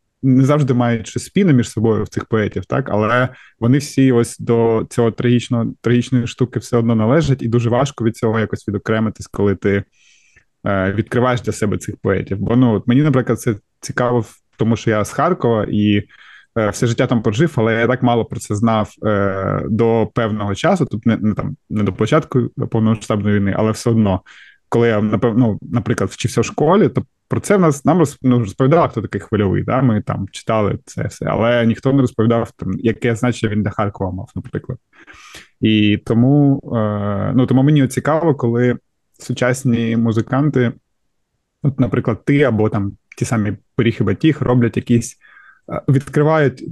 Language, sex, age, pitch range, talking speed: Ukrainian, male, 20-39, 110-130 Hz, 175 wpm